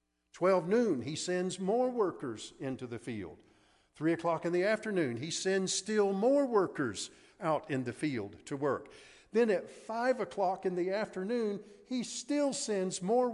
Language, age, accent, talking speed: English, 50-69, American, 160 wpm